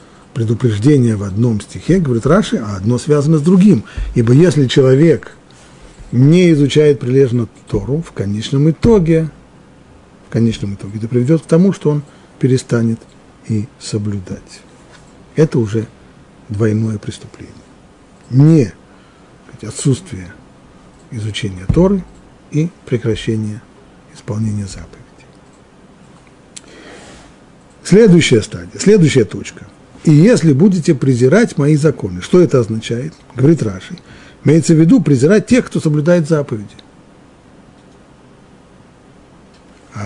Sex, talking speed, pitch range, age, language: male, 105 wpm, 115-165 Hz, 50-69, Russian